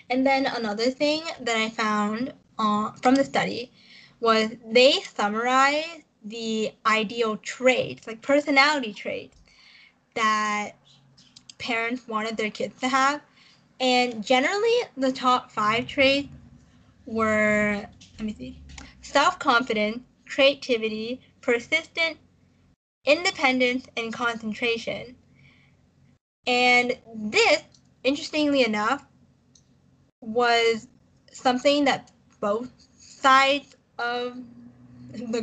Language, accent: English, American